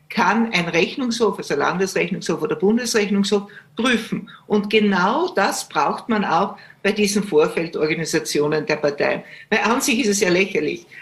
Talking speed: 145 wpm